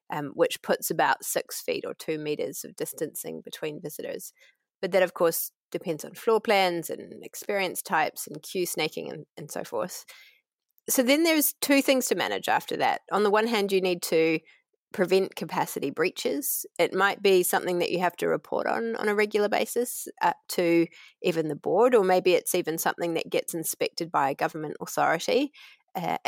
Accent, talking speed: Australian, 185 wpm